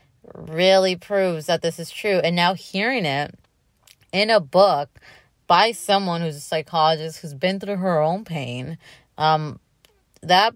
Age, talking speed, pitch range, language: 20-39, 150 wpm, 155-190 Hz, English